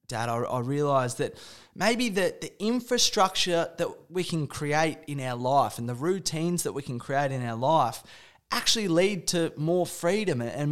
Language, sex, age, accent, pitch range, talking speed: English, male, 20-39, Australian, 135-185 Hz, 180 wpm